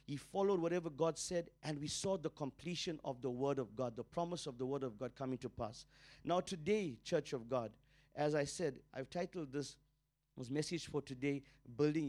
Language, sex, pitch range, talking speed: English, male, 140-180 Hz, 205 wpm